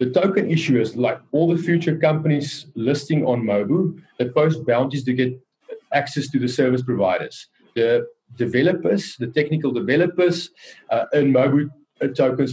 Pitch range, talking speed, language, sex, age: 125-165 Hz, 145 wpm, English, male, 30-49